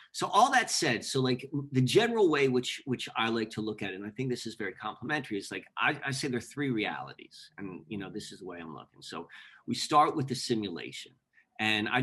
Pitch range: 110-135 Hz